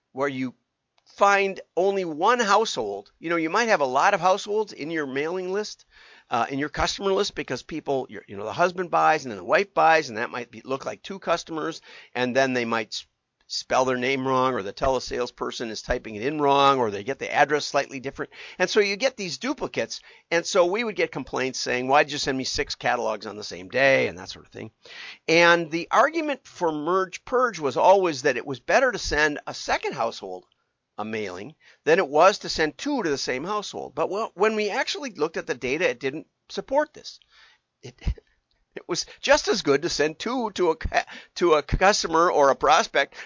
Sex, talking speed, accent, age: male, 215 wpm, American, 50-69